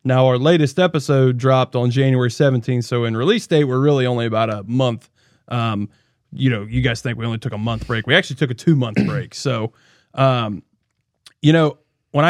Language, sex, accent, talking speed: English, male, American, 200 wpm